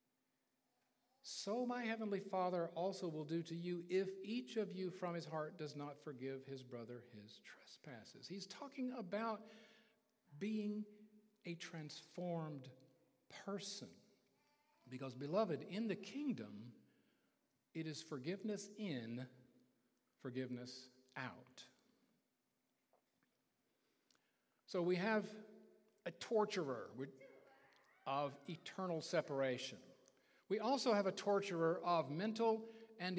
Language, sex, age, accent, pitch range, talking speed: English, male, 50-69, American, 145-215 Hz, 105 wpm